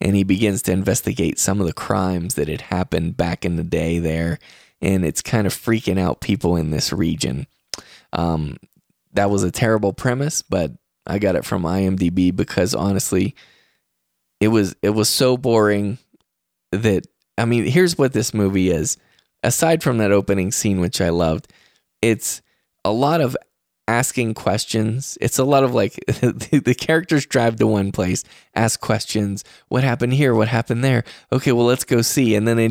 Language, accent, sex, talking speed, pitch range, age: English, American, male, 175 wpm, 95-130 Hz, 20-39